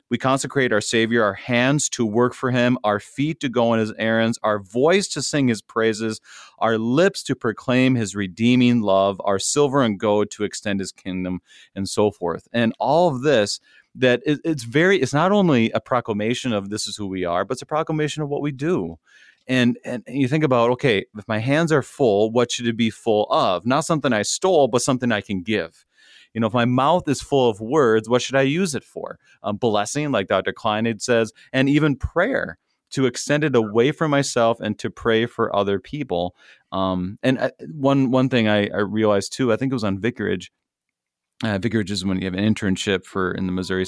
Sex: male